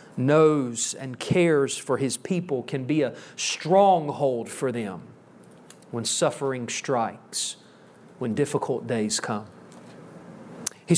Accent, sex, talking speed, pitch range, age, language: American, male, 110 wpm, 150-185 Hz, 40-59, English